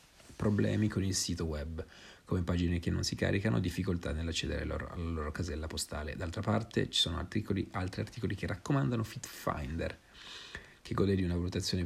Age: 40-59